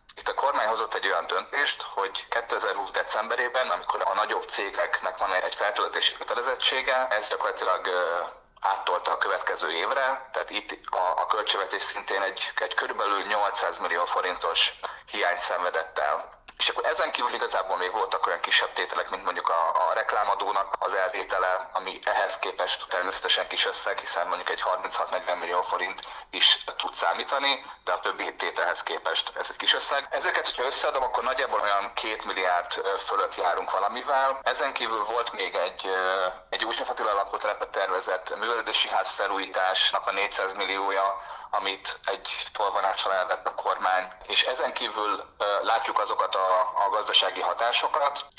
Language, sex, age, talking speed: Hungarian, male, 30-49, 150 wpm